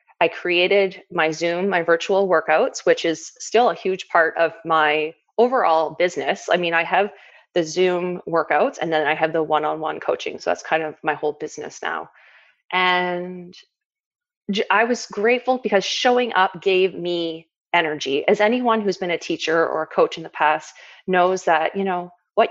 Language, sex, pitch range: English, female, 165-215 Hz